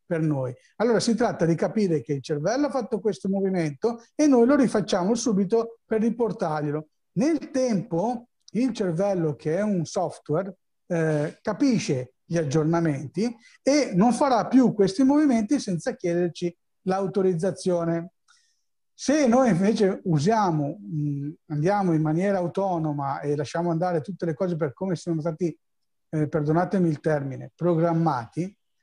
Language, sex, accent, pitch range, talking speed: Italian, male, native, 160-215 Hz, 135 wpm